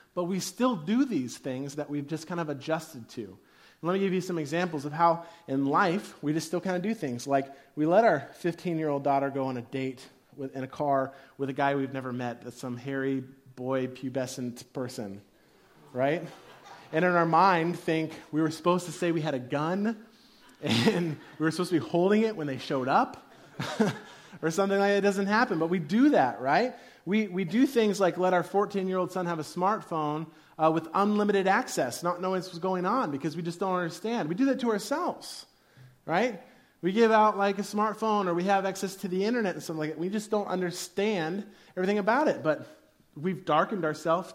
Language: English